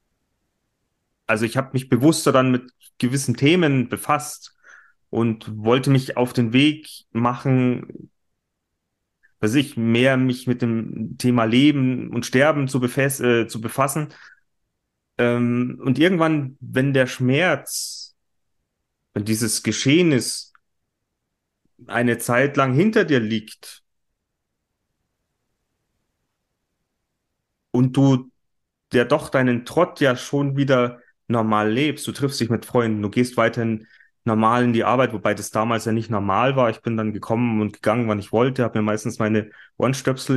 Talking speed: 135 wpm